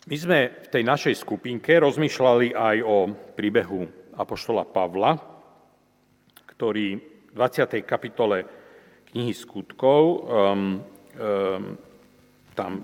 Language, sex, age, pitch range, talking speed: Slovak, male, 40-59, 105-130 Hz, 100 wpm